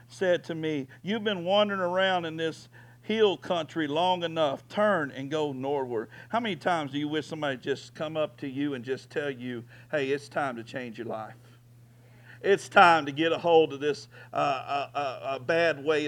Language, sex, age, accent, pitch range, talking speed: English, male, 50-69, American, 150-190 Hz, 200 wpm